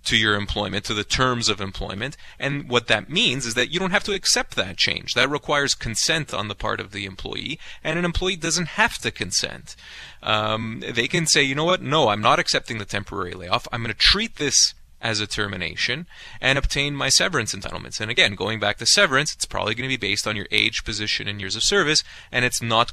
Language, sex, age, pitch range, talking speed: English, male, 30-49, 105-135 Hz, 230 wpm